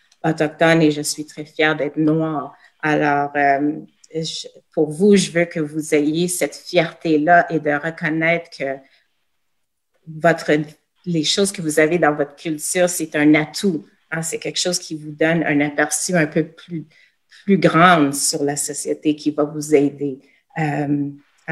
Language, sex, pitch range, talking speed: French, female, 150-175 Hz, 160 wpm